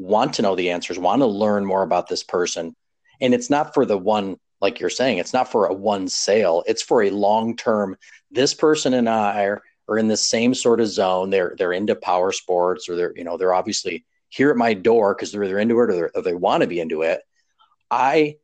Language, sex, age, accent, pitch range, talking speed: English, male, 40-59, American, 95-155 Hz, 230 wpm